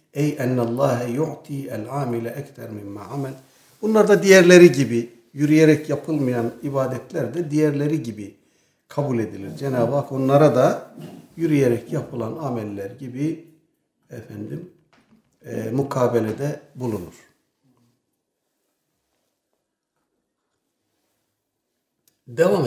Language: Turkish